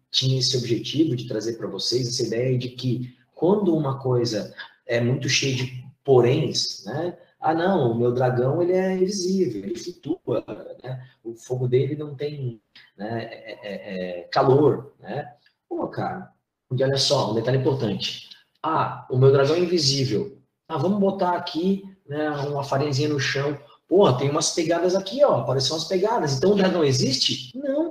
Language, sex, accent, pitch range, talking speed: Portuguese, male, Brazilian, 125-170 Hz, 170 wpm